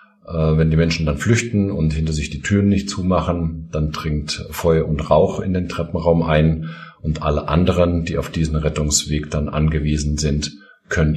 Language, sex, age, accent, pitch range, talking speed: German, male, 50-69, German, 75-100 Hz, 170 wpm